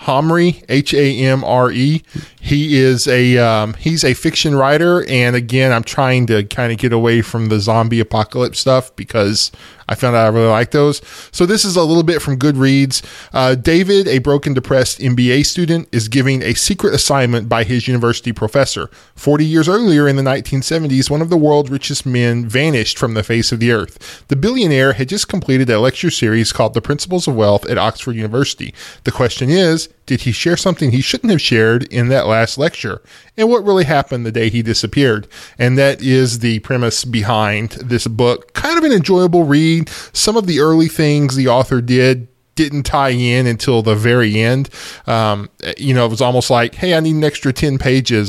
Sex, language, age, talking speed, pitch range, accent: male, English, 10-29, 195 wpm, 115-150 Hz, American